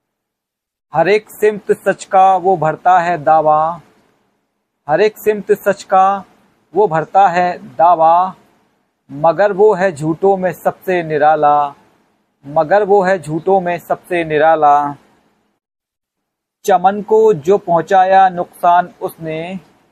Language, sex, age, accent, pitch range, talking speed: Hindi, male, 50-69, native, 160-200 Hz, 115 wpm